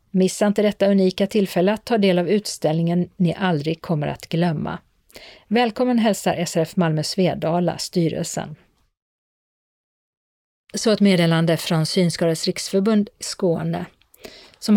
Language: Swedish